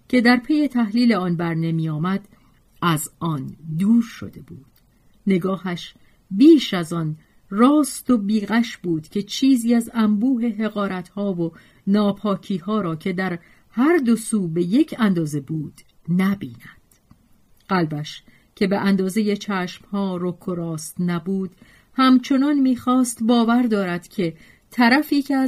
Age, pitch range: 40-59, 170-230 Hz